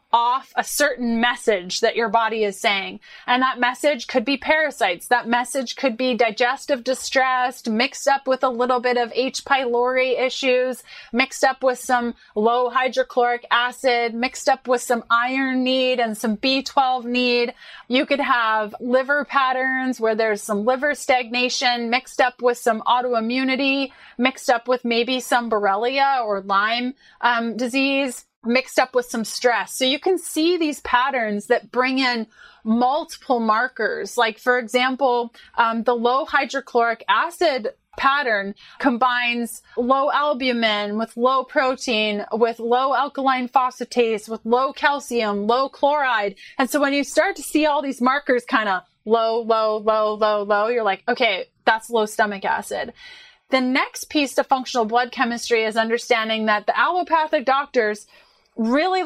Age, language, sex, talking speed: 30-49, English, female, 155 wpm